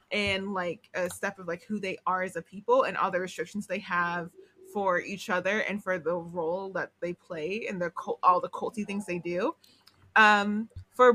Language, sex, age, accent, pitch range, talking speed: English, female, 20-39, American, 185-245 Hz, 205 wpm